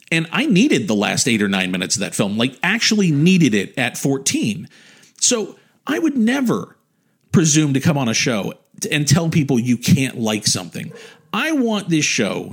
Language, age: English, 40-59